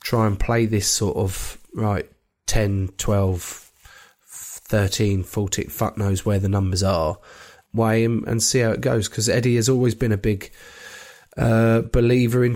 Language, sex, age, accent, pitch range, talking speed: English, male, 20-39, British, 105-125 Hz, 160 wpm